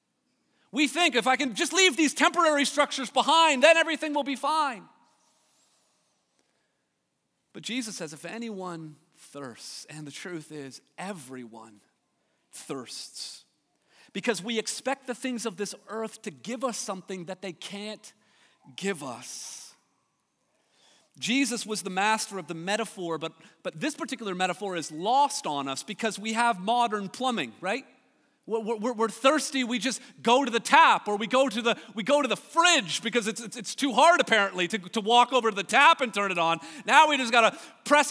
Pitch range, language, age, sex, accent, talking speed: 205-280 Hz, English, 40-59, male, American, 170 wpm